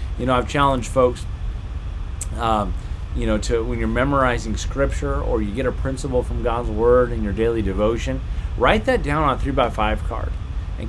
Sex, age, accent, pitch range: male, 30-49, American, 95-125 Hz